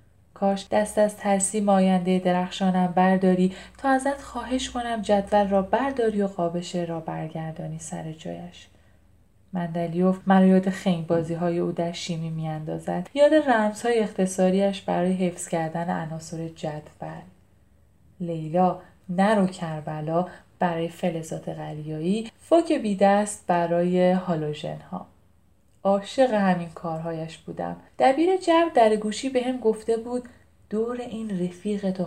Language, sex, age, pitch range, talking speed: Persian, female, 10-29, 165-220 Hz, 120 wpm